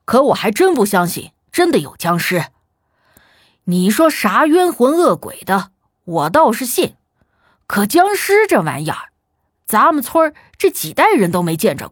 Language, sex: Chinese, female